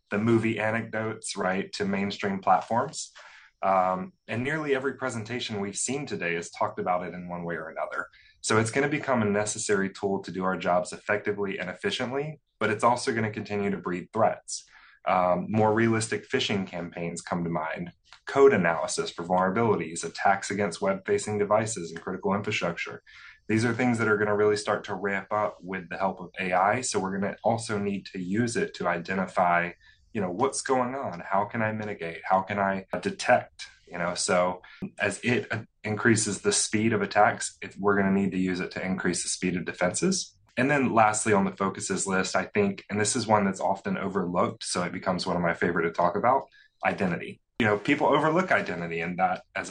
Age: 20-39